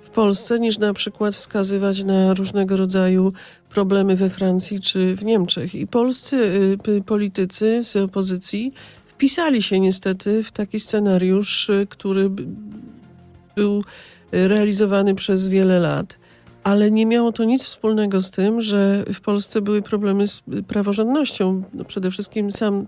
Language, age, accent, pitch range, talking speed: Polish, 40-59, native, 190-220 Hz, 135 wpm